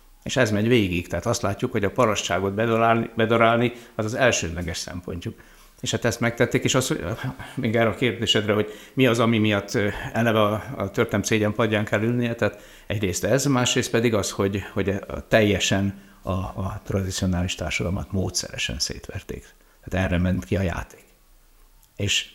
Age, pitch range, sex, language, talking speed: 60-79, 95-115 Hz, male, Hungarian, 160 wpm